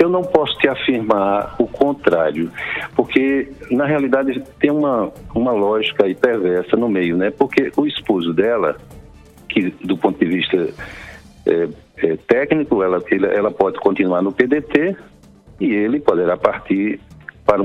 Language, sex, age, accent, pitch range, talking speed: Portuguese, male, 60-79, Brazilian, 95-145 Hz, 135 wpm